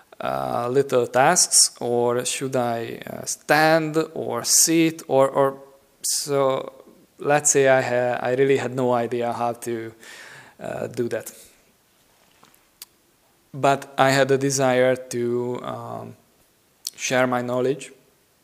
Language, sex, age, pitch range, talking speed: English, male, 20-39, 120-135 Hz, 120 wpm